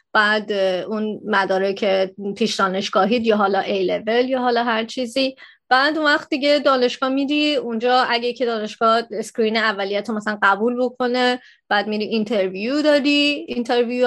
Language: Persian